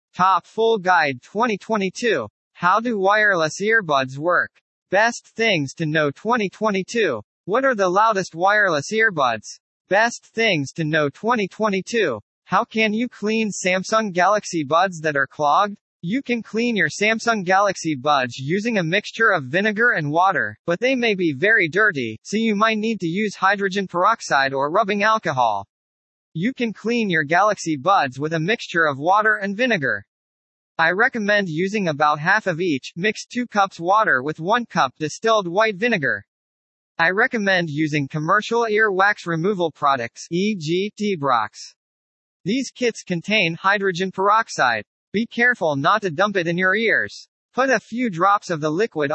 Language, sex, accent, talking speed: English, male, American, 155 wpm